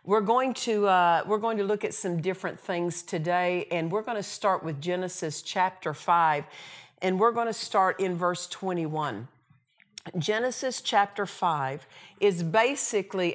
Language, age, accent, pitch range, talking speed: English, 50-69, American, 170-210 Hz, 145 wpm